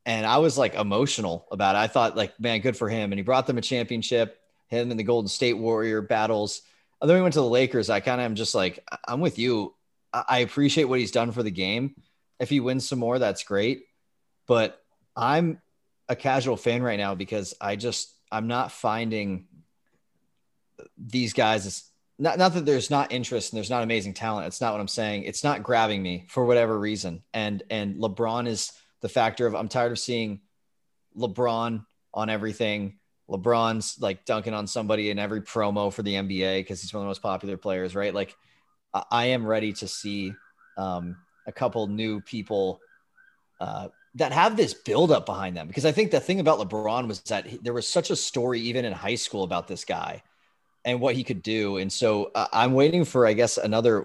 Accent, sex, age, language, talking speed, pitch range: American, male, 30-49, English, 210 wpm, 100-125 Hz